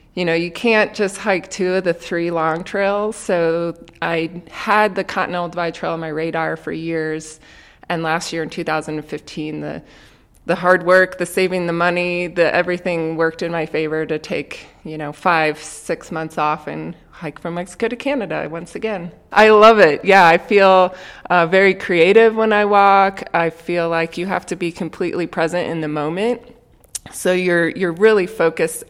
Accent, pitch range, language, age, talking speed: American, 160-190 Hz, English, 20-39, 185 wpm